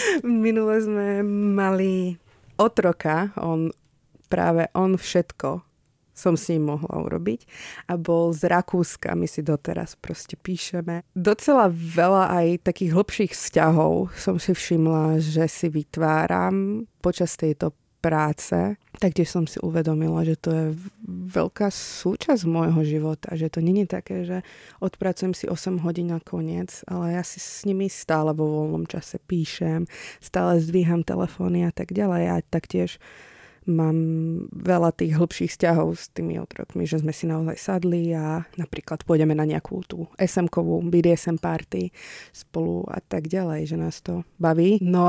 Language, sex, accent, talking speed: Czech, female, native, 145 wpm